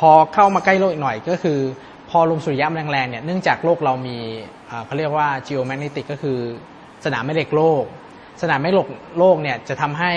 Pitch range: 130-160 Hz